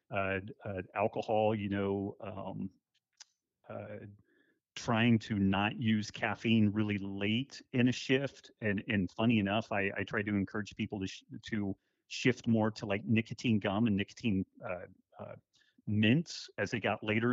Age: 40-59